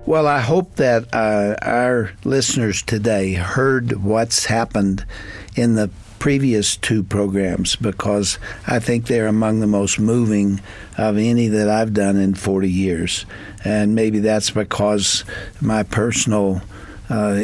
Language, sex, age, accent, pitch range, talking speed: English, male, 60-79, American, 100-120 Hz, 135 wpm